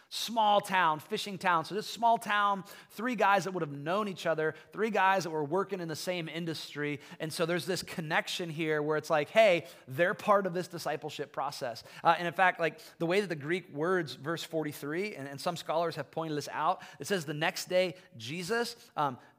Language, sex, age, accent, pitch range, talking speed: English, male, 30-49, American, 140-185 Hz, 215 wpm